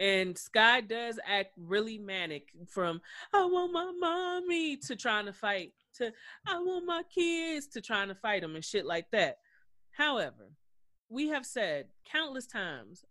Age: 30-49